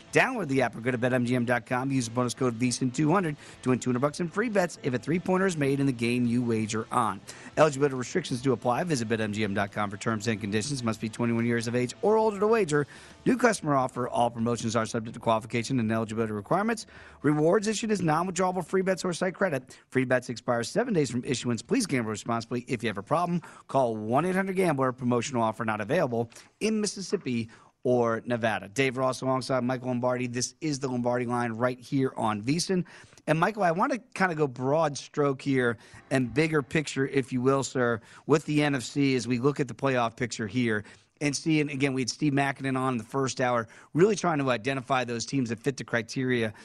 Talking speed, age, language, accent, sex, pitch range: 210 wpm, 40-59, English, American, male, 120-150 Hz